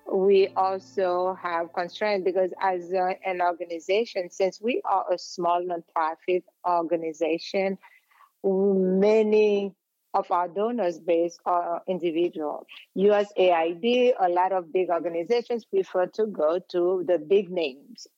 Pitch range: 170-200 Hz